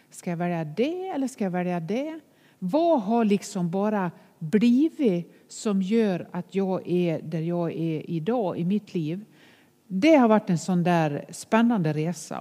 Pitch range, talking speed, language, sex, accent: 175-225 Hz, 165 wpm, English, female, Swedish